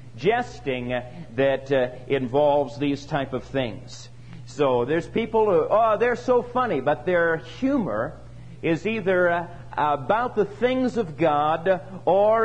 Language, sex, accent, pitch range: English, male, American, 125-200 Hz